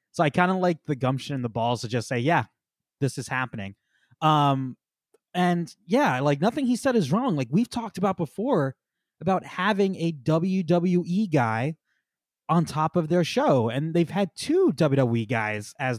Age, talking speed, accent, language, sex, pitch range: 20-39, 180 wpm, American, English, male, 130-185 Hz